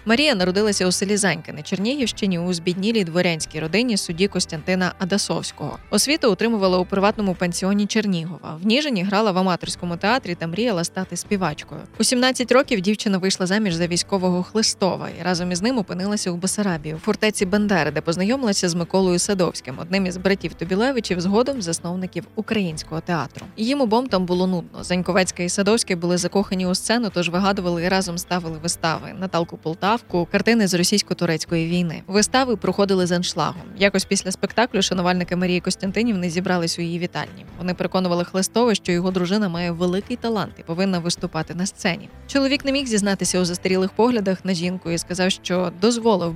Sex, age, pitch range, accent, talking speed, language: female, 20-39, 175-210 Hz, native, 160 wpm, Ukrainian